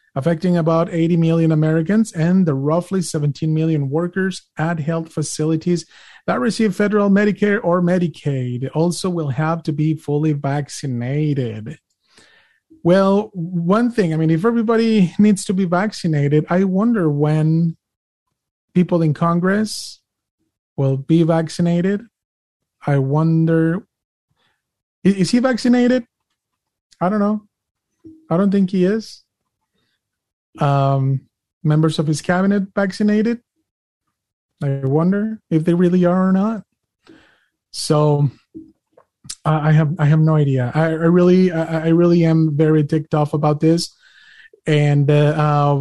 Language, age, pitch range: English, 30-49, 155-185 Hz